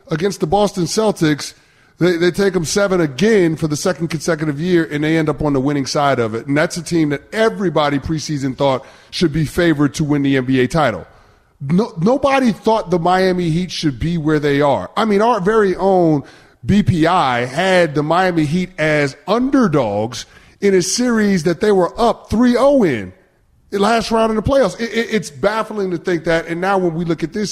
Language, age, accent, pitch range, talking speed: English, 30-49, American, 145-185 Hz, 205 wpm